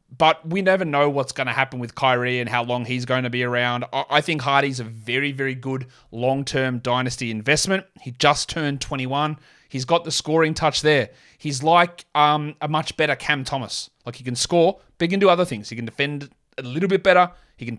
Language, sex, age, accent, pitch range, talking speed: English, male, 30-49, Australian, 125-165 Hz, 220 wpm